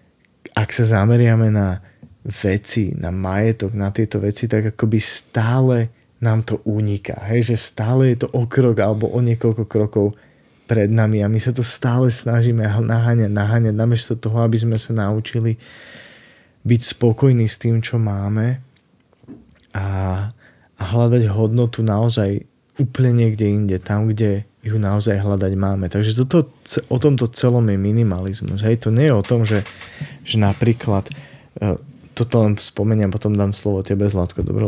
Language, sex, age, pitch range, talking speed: Slovak, male, 20-39, 100-120 Hz, 150 wpm